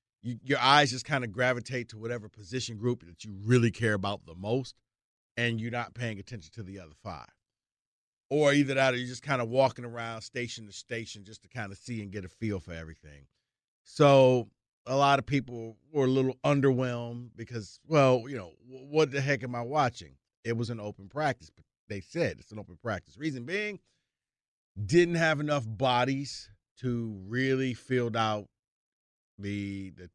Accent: American